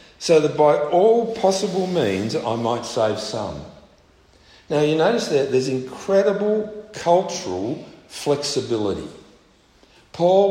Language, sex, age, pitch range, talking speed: English, male, 50-69, 130-180 Hz, 110 wpm